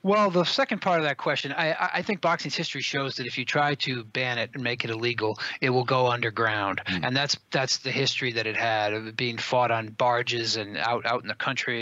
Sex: male